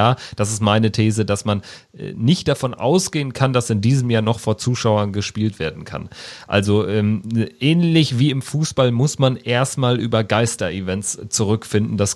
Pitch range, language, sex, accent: 95-120 Hz, German, male, German